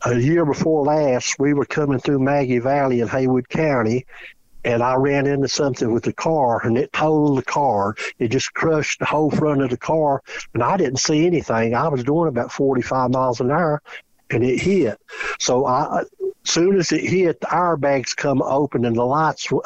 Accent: American